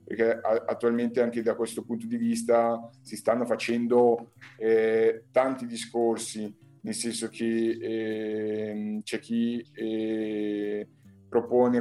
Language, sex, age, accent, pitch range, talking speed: Italian, male, 20-39, native, 110-120 Hz, 110 wpm